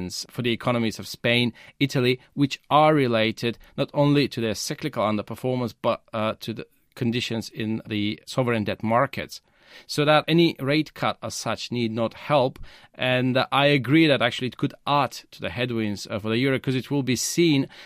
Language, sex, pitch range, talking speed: English, male, 110-140 Hz, 190 wpm